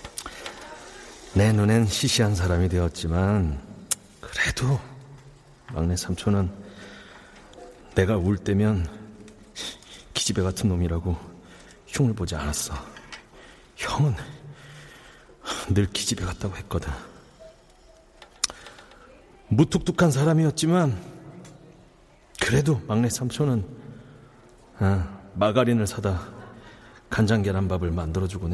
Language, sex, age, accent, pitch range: Korean, male, 40-59, native, 95-135 Hz